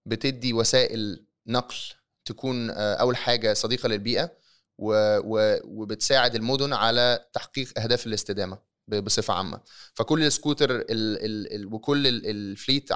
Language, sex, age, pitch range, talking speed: Arabic, male, 20-39, 110-135 Hz, 115 wpm